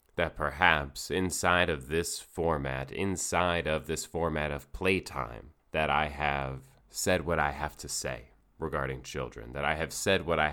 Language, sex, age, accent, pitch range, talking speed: English, male, 30-49, American, 75-95 Hz, 165 wpm